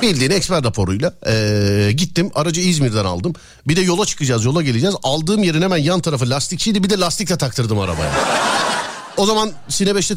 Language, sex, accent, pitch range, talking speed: Turkish, male, native, 120-180 Hz, 165 wpm